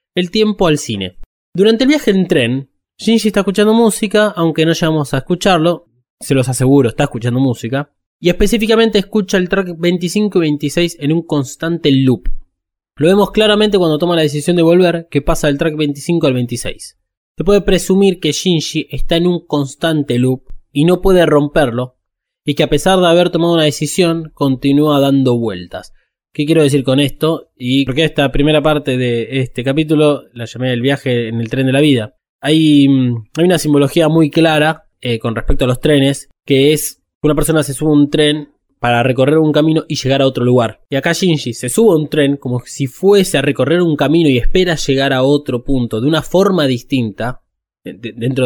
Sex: male